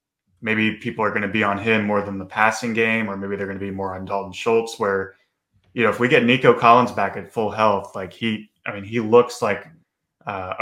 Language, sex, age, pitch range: English, male, 20-39, 100-115 Hz